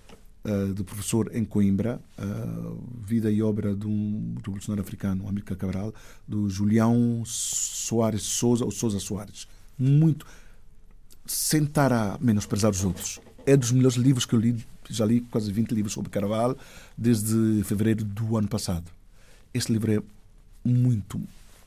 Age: 50-69